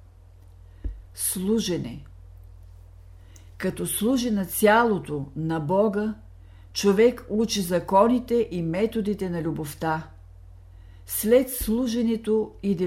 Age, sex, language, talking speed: 60-79, female, Bulgarian, 80 wpm